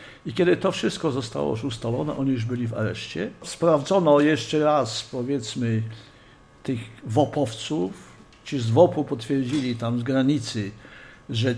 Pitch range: 120-145 Hz